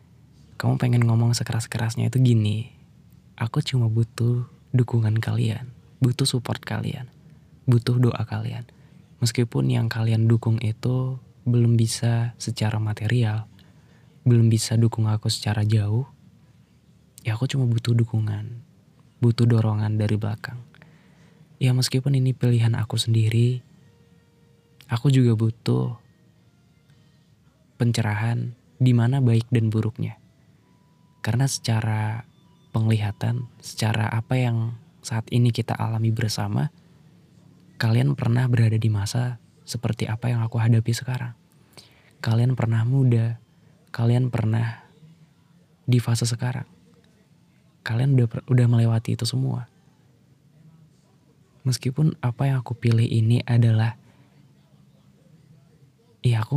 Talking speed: 105 wpm